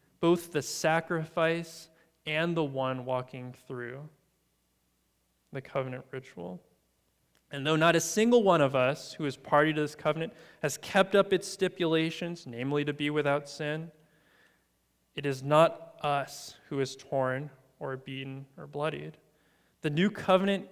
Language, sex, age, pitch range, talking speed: English, male, 20-39, 135-165 Hz, 140 wpm